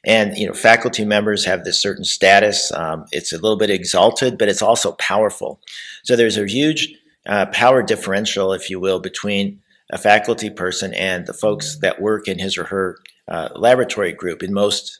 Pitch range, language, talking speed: 95-115 Hz, English, 190 wpm